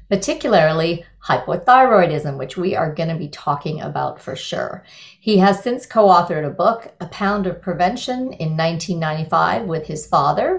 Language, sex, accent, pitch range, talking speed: English, female, American, 165-210 Hz, 155 wpm